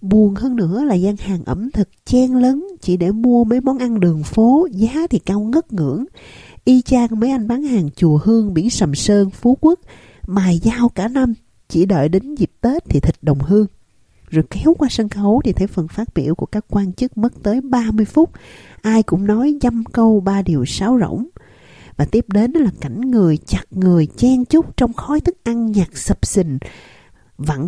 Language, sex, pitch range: Vietnamese, female, 165-245 Hz